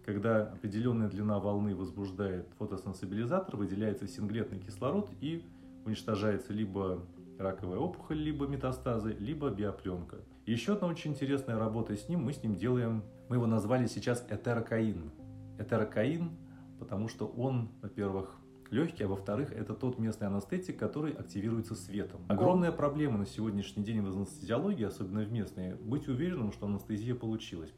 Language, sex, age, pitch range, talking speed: Russian, male, 30-49, 100-130 Hz, 140 wpm